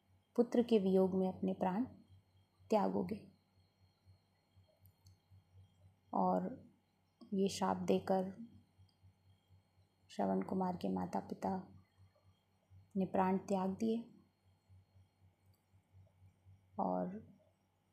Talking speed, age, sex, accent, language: 70 wpm, 20-39, female, native, Hindi